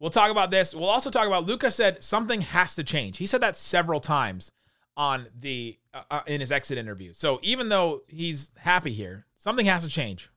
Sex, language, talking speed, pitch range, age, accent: male, English, 210 wpm, 135-185 Hz, 30-49, American